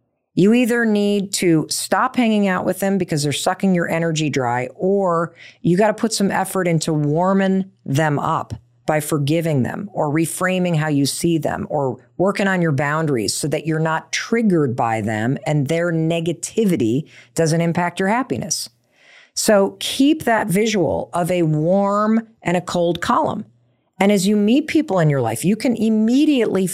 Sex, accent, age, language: female, American, 40-59, English